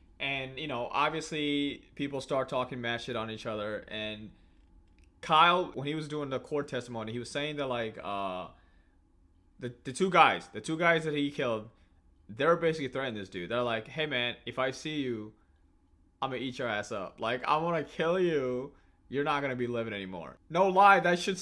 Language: English